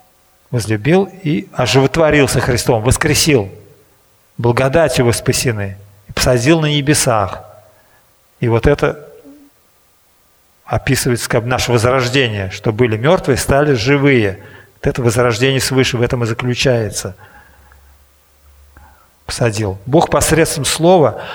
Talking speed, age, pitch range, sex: 95 wpm, 40-59, 110-145 Hz, male